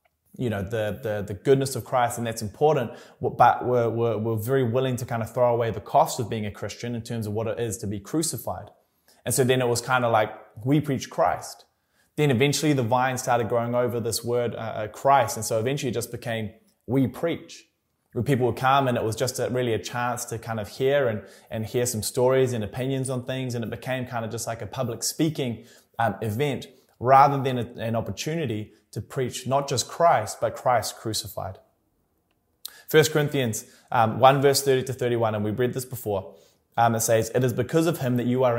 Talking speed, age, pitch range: 220 wpm, 20-39, 110-130 Hz